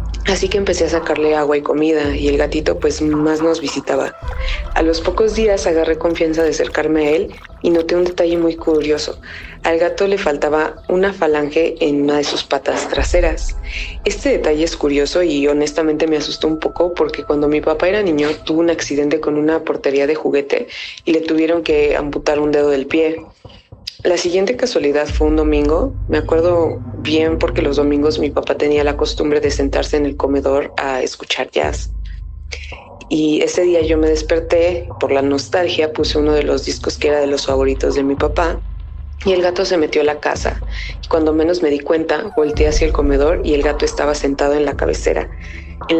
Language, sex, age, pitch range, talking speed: Spanish, female, 20-39, 145-165 Hz, 195 wpm